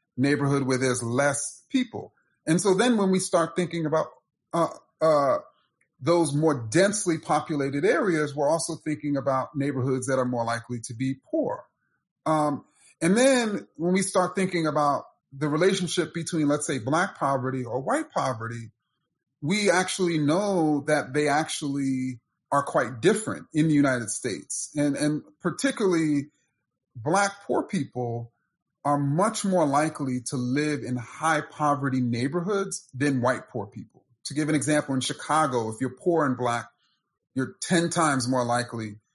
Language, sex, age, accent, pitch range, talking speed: English, male, 30-49, American, 130-170 Hz, 150 wpm